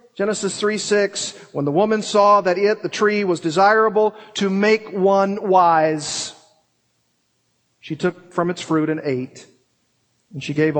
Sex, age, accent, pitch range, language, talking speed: male, 40-59, American, 150-195 Hz, English, 145 wpm